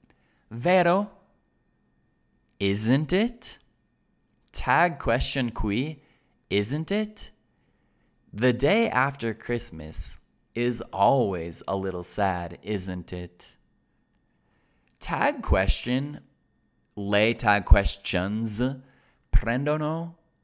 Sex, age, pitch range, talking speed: male, 20-39, 95-130 Hz, 75 wpm